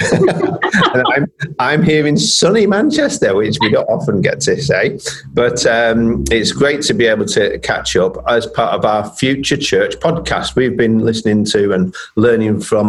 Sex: male